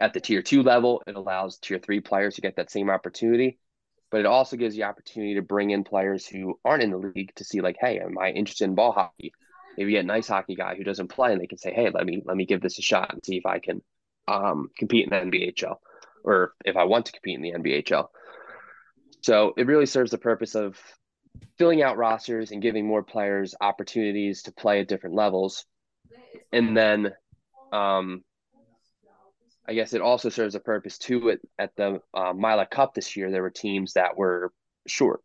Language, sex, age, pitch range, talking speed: English, male, 20-39, 95-115 Hz, 215 wpm